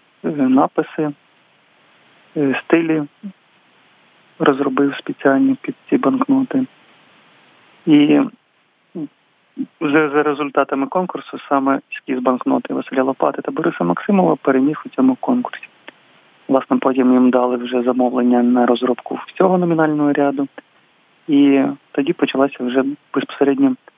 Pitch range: 130-160 Hz